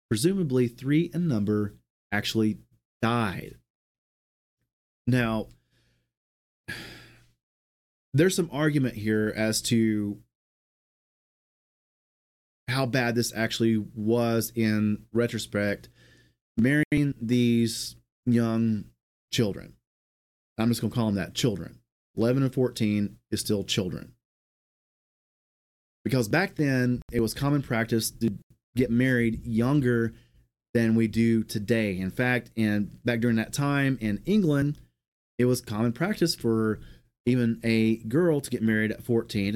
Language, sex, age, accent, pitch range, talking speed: English, male, 30-49, American, 105-125 Hz, 115 wpm